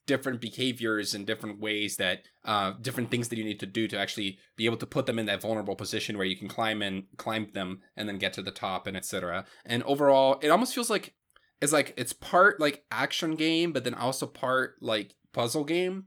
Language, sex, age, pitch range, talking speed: English, male, 20-39, 110-140 Hz, 225 wpm